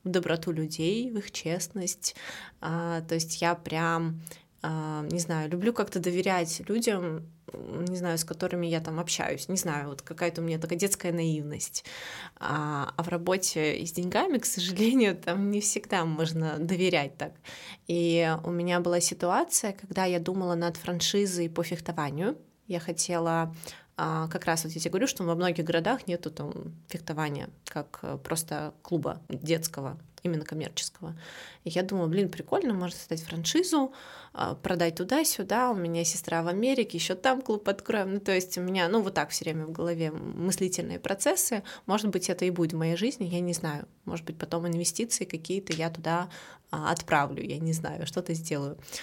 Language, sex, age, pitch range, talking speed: Russian, female, 20-39, 165-190 Hz, 165 wpm